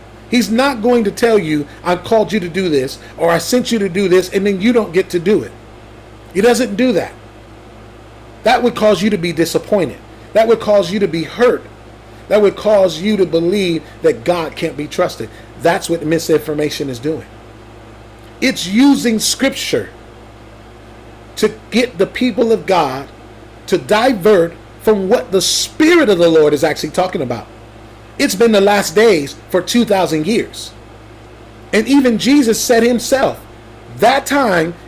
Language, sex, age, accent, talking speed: English, male, 40-59, American, 170 wpm